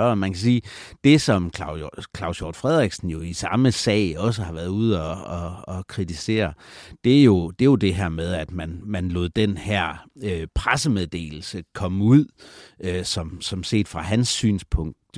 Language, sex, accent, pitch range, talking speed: Danish, male, native, 85-105 Hz, 180 wpm